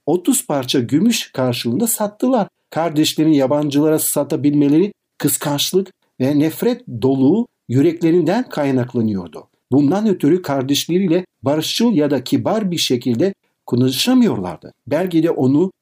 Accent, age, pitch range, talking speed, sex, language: native, 60-79, 130-185 Hz, 100 wpm, male, Turkish